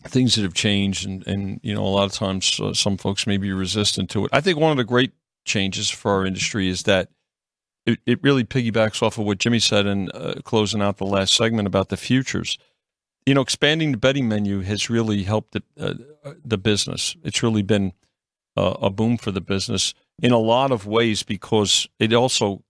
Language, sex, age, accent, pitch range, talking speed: English, male, 50-69, American, 100-125 Hz, 210 wpm